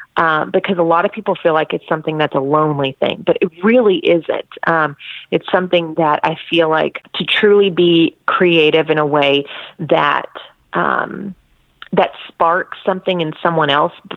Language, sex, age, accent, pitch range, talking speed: English, female, 30-49, American, 150-180 Hz, 170 wpm